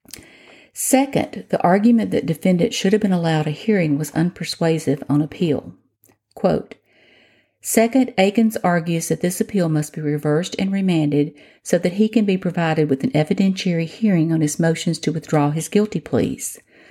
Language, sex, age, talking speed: English, female, 50-69, 160 wpm